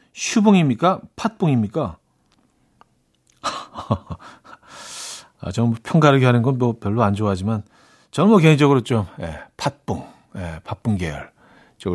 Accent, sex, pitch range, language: native, male, 100-160 Hz, Korean